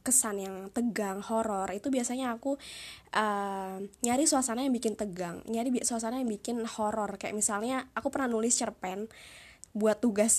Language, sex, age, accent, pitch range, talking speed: Indonesian, female, 20-39, native, 200-245 Hz, 150 wpm